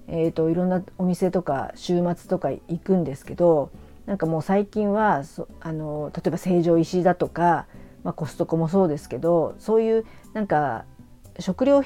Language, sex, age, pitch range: Japanese, female, 50-69, 150-185 Hz